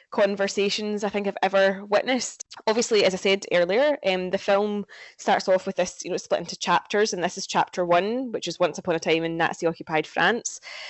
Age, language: 10-29, English